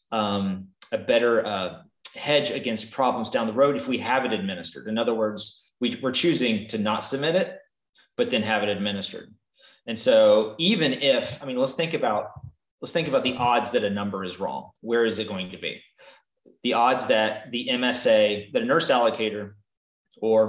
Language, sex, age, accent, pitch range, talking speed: English, male, 30-49, American, 105-140 Hz, 185 wpm